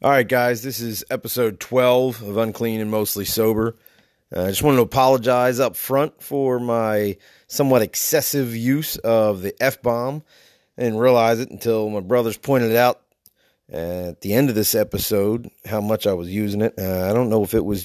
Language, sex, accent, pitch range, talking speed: English, male, American, 100-125 Hz, 190 wpm